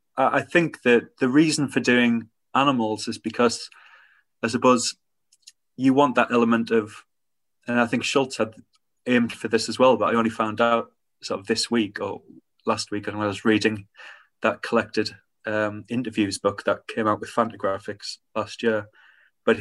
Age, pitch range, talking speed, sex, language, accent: 30-49, 105-115 Hz, 170 wpm, male, English, British